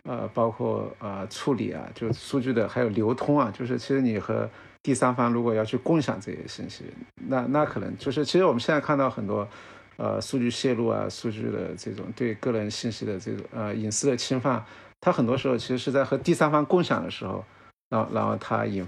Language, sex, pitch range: Chinese, male, 110-135 Hz